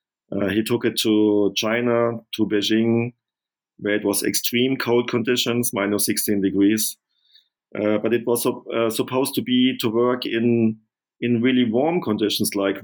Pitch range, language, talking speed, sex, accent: 105-115 Hz, English, 160 wpm, male, German